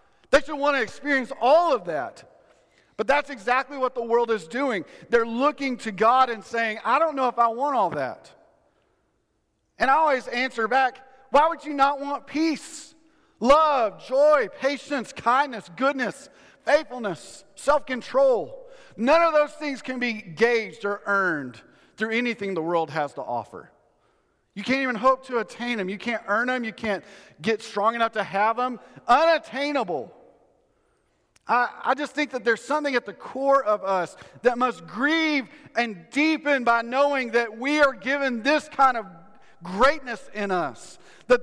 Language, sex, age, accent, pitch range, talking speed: English, male, 40-59, American, 225-285 Hz, 165 wpm